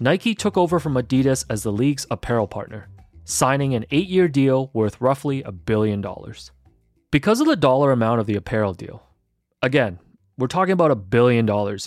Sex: male